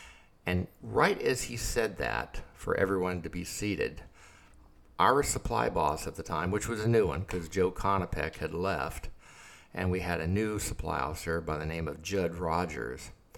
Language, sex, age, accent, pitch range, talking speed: English, male, 60-79, American, 85-105 Hz, 180 wpm